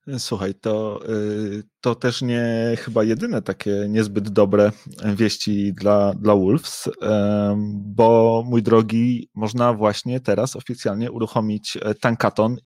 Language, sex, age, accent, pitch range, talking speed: Polish, male, 30-49, native, 110-120 Hz, 110 wpm